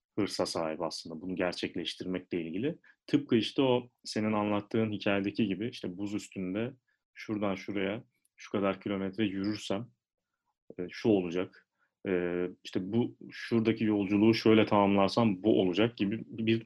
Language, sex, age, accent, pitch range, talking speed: Turkish, male, 30-49, native, 95-115 Hz, 125 wpm